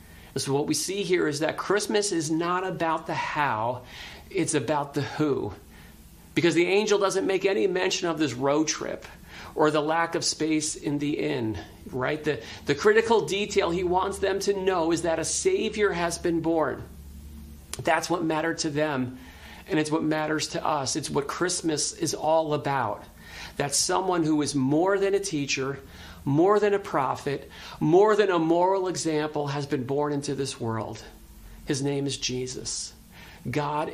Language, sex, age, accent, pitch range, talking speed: English, male, 40-59, American, 125-170 Hz, 175 wpm